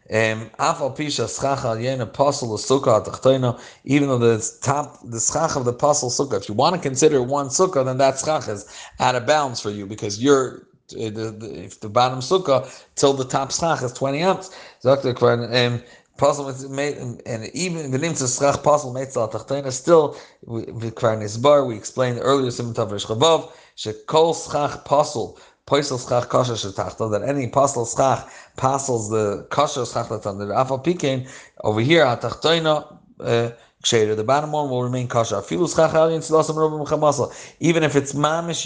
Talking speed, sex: 130 wpm, male